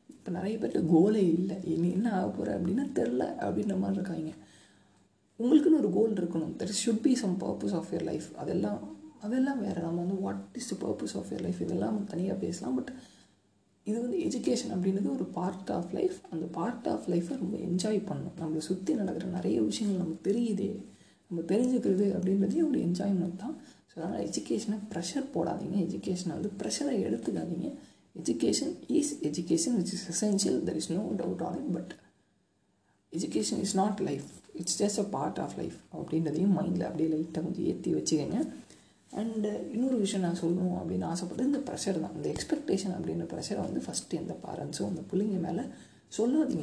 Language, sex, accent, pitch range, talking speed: Tamil, female, native, 170-220 Hz, 165 wpm